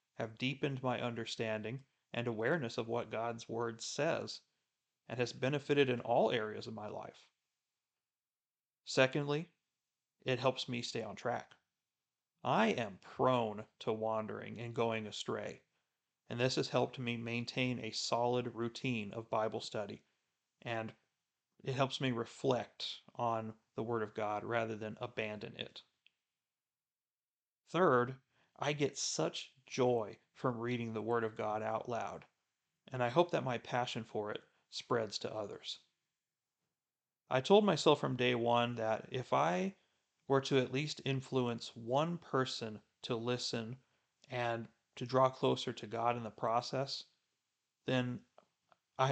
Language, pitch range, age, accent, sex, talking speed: English, 115-130 Hz, 40-59, American, male, 140 wpm